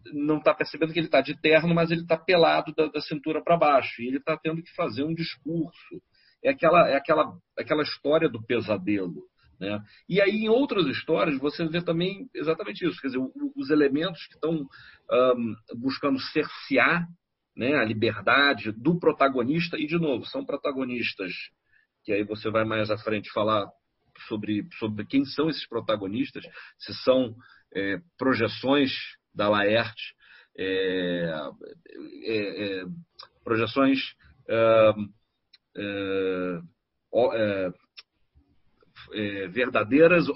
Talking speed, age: 120 wpm, 40-59